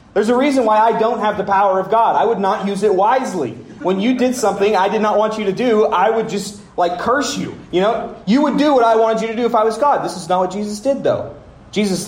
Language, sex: English, male